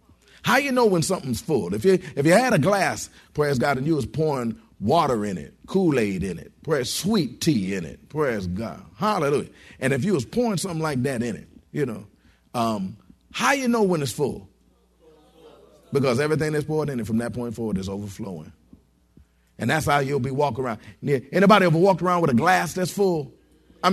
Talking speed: 210 wpm